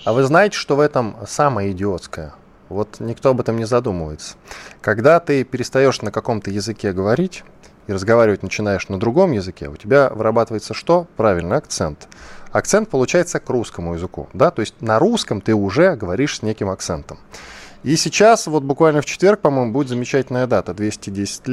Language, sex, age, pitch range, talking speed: Russian, male, 20-39, 100-150 Hz, 165 wpm